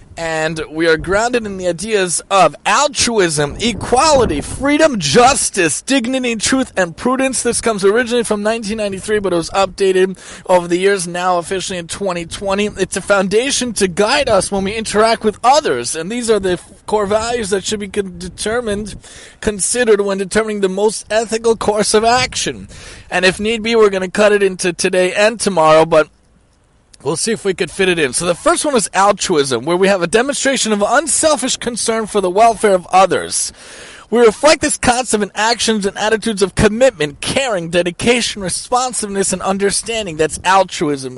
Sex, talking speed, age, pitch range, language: male, 175 wpm, 30-49, 180-225 Hz, English